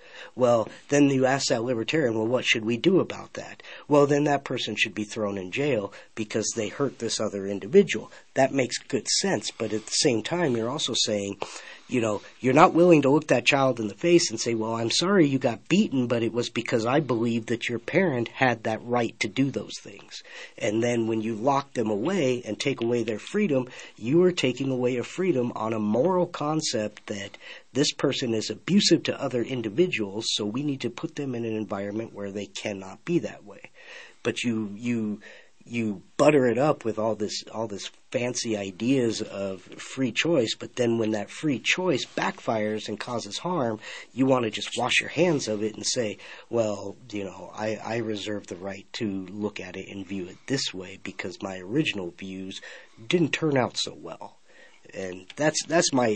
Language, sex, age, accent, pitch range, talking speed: English, male, 50-69, American, 105-135 Hz, 200 wpm